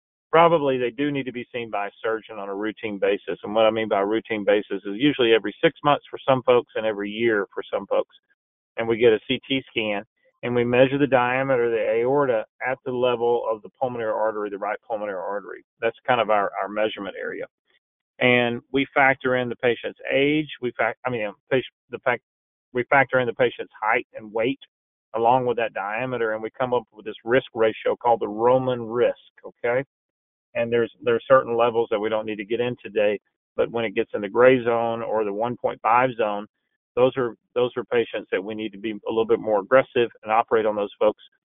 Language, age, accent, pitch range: English, 40-59, American, 110-135 Hz